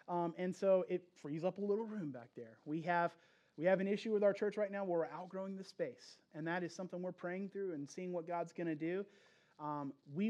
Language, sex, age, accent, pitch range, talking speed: English, male, 30-49, American, 160-205 Hz, 250 wpm